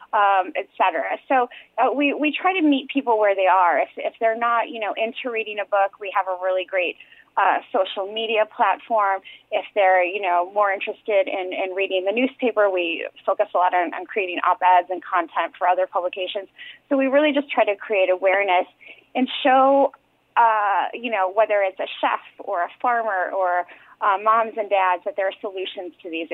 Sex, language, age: female, English, 30-49